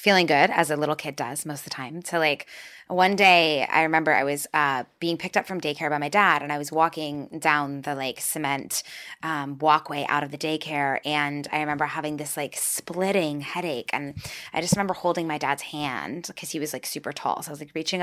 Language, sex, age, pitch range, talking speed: English, female, 20-39, 145-180 Hz, 230 wpm